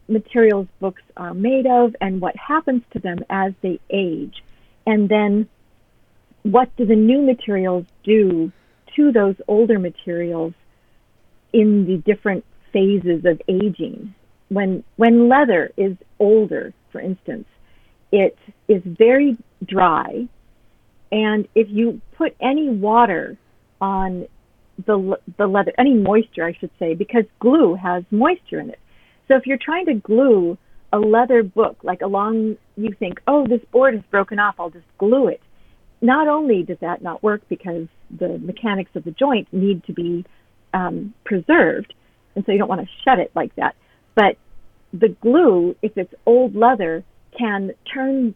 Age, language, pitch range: 50-69, English, 185-230 Hz